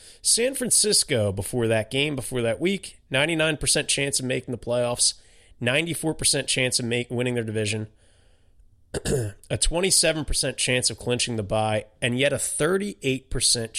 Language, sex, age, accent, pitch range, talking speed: English, male, 30-49, American, 110-155 Hz, 135 wpm